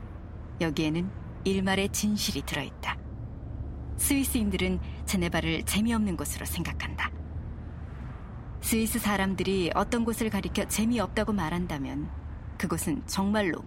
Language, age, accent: Korean, 40-59, native